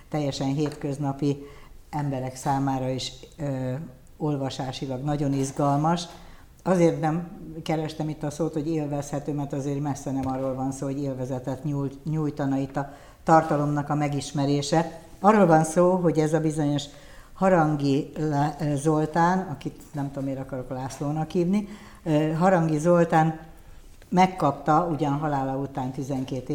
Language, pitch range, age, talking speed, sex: Hungarian, 130-155 Hz, 60-79, 130 wpm, female